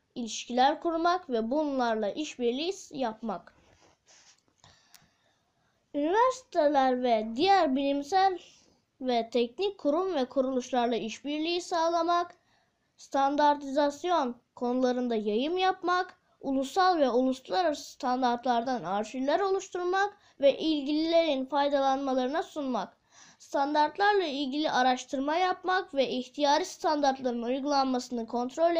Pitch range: 250-330 Hz